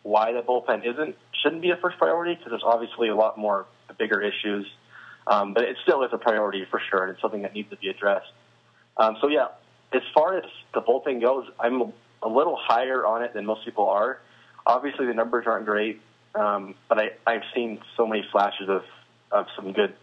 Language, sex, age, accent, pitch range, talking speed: English, male, 20-39, American, 105-120 Hz, 215 wpm